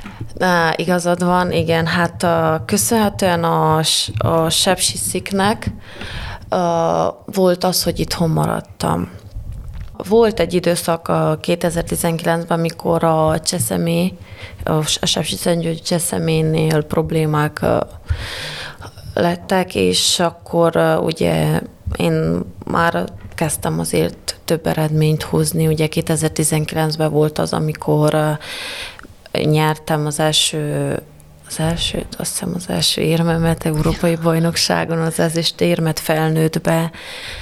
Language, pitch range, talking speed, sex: Hungarian, 155-170 Hz, 105 wpm, female